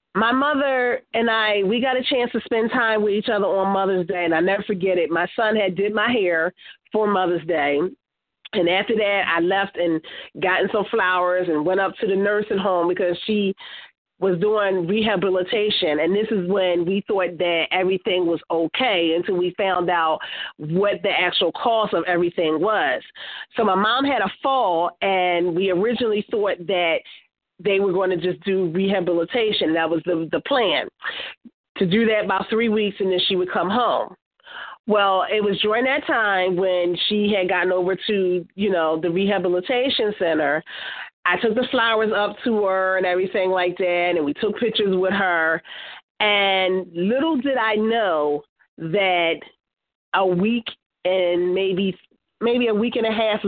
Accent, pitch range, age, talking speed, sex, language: American, 180-215 Hz, 40-59, 175 wpm, female, English